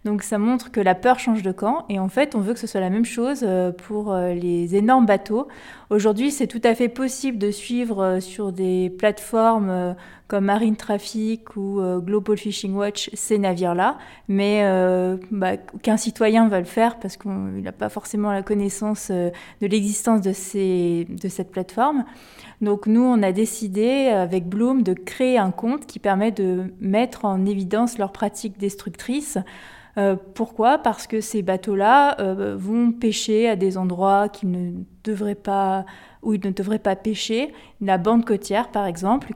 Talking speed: 170 wpm